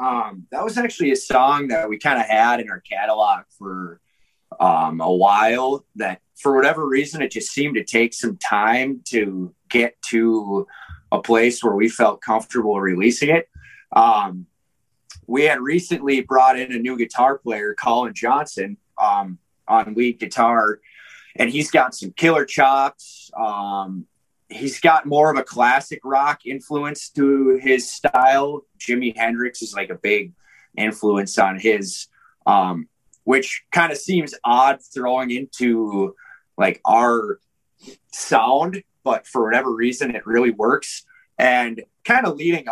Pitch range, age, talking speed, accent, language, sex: 115-145 Hz, 30-49, 145 wpm, American, English, male